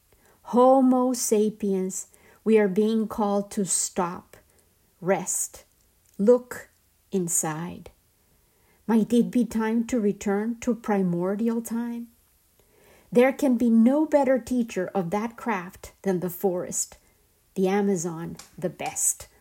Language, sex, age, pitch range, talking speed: Spanish, female, 50-69, 195-245 Hz, 110 wpm